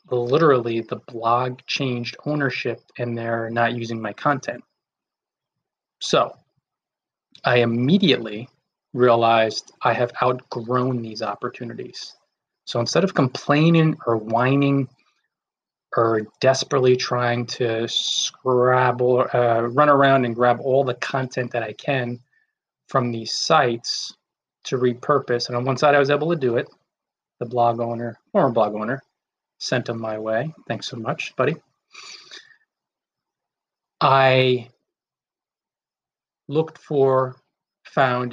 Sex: male